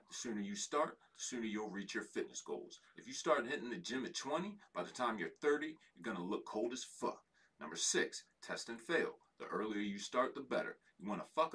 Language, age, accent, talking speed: English, 40-59, American, 240 wpm